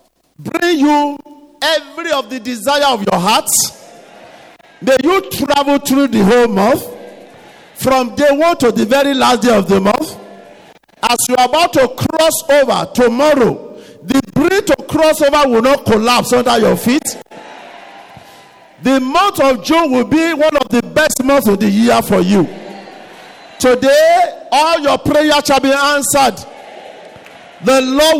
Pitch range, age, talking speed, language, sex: 250-305 Hz, 50-69, 150 wpm, English, male